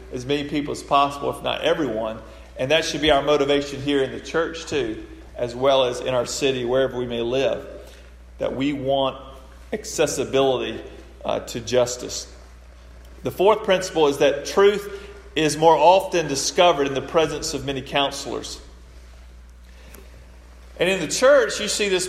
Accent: American